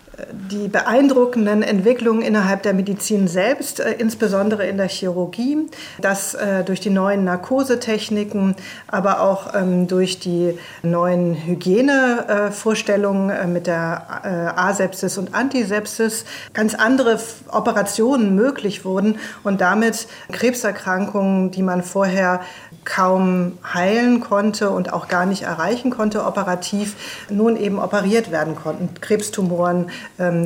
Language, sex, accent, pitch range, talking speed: German, female, German, 180-210 Hz, 110 wpm